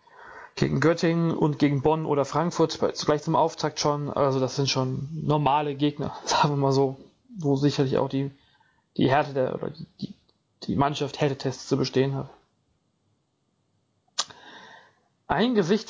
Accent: German